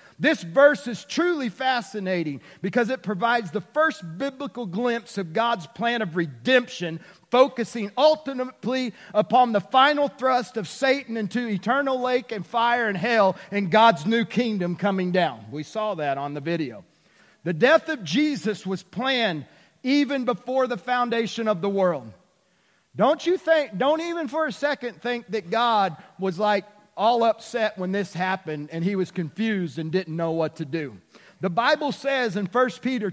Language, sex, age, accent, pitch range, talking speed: English, male, 40-59, American, 190-255 Hz, 165 wpm